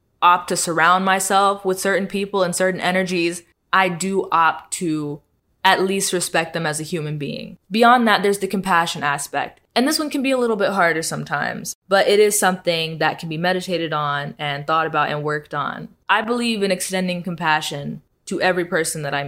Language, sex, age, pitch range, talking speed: English, female, 20-39, 155-185 Hz, 195 wpm